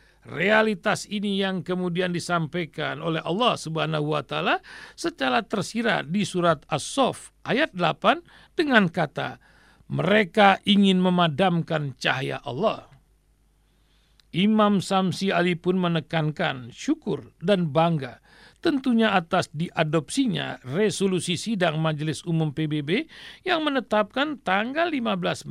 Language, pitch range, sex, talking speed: Indonesian, 165-225 Hz, male, 105 wpm